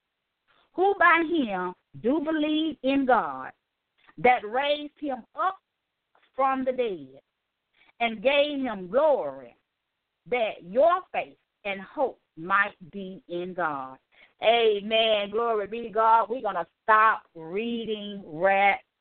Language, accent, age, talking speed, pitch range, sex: English, American, 40-59, 120 wpm, 180-230 Hz, female